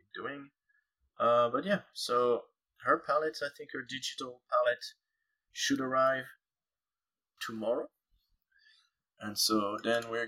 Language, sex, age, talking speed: English, male, 20-39, 110 wpm